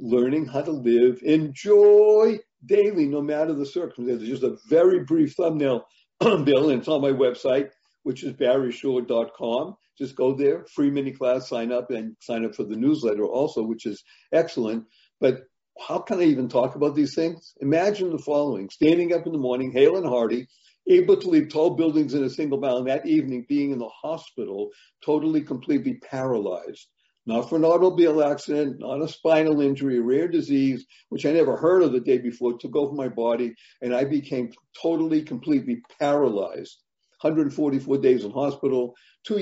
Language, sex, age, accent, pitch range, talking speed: English, male, 60-79, American, 130-165 Hz, 175 wpm